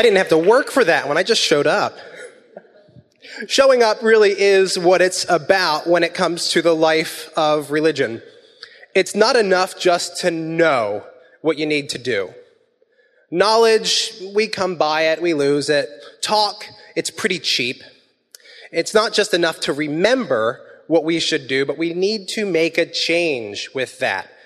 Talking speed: 170 wpm